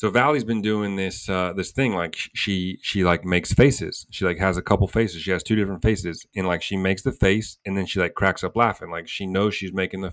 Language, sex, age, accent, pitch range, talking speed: English, male, 30-49, American, 95-110 Hz, 260 wpm